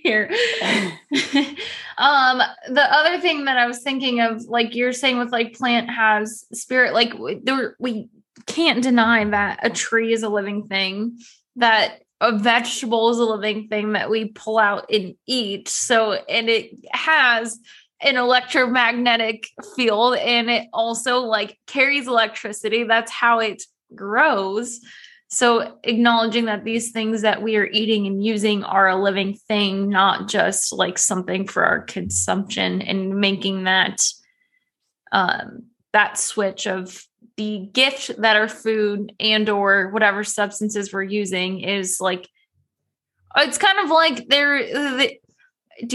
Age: 10-29